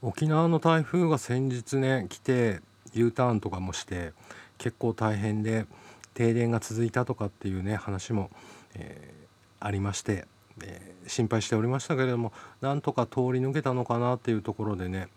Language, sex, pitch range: Japanese, male, 100-120 Hz